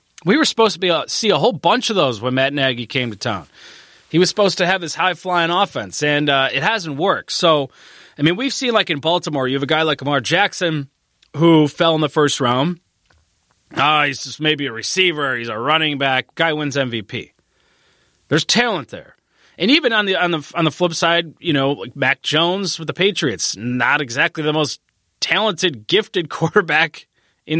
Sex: male